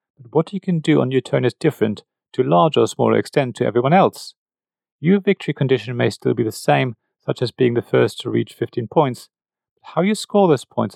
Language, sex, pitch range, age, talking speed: English, male, 125-175 Hz, 40-59, 230 wpm